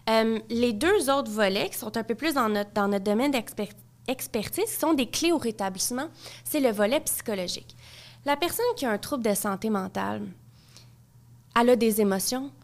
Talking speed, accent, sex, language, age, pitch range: 180 wpm, Canadian, female, French, 20-39, 195-245 Hz